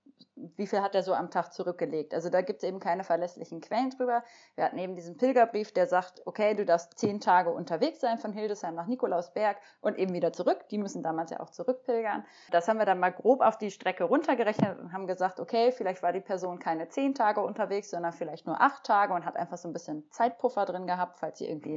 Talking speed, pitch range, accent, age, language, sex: 230 wpm, 180-235 Hz, German, 30-49, German, female